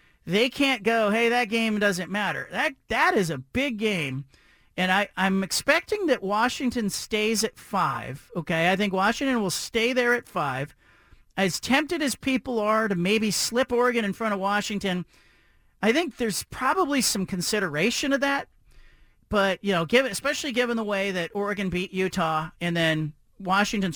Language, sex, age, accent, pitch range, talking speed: English, male, 40-59, American, 180-240 Hz, 170 wpm